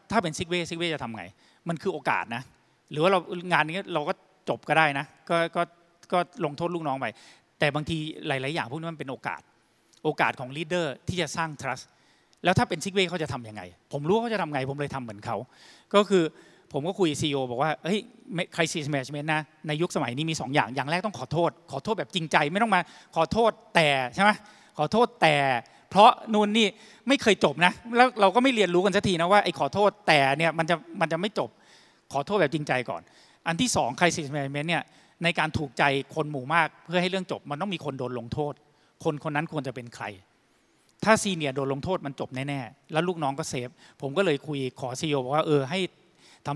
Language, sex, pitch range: Thai, male, 140-185 Hz